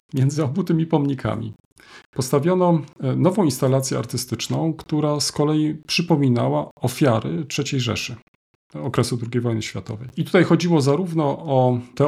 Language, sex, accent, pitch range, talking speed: Polish, male, native, 120-155 Hz, 125 wpm